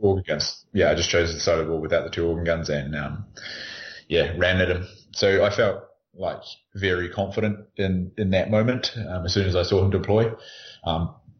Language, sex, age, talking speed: English, male, 20-39, 215 wpm